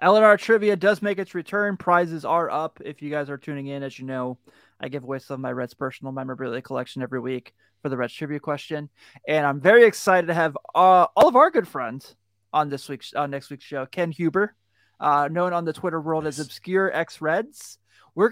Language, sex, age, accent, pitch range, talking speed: English, male, 20-39, American, 140-190 Hz, 220 wpm